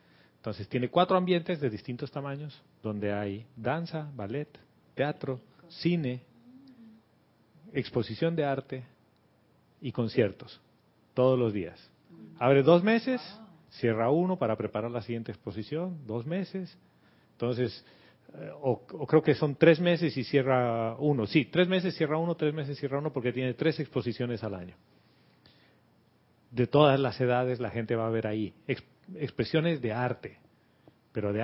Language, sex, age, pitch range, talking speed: Spanish, male, 40-59, 120-165 Hz, 140 wpm